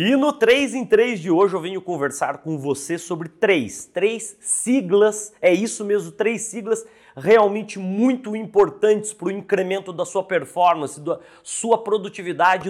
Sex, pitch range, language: male, 175-225 Hz, Portuguese